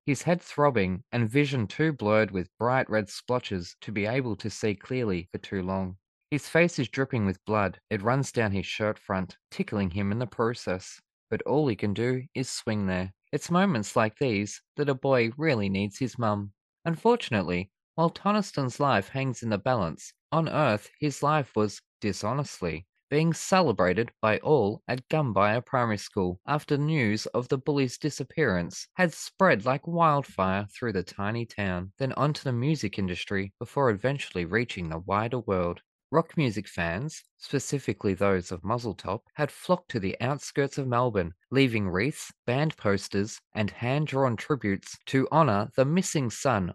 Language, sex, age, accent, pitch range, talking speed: English, male, 20-39, Australian, 100-145 Hz, 165 wpm